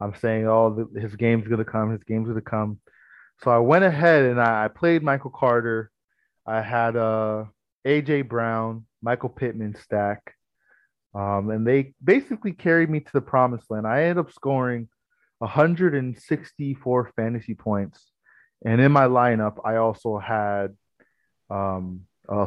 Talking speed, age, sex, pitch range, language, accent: 160 wpm, 20-39, male, 110-140 Hz, English, American